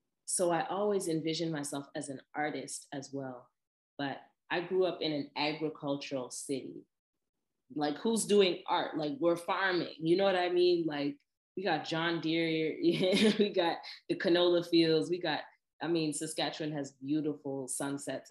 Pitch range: 135-165 Hz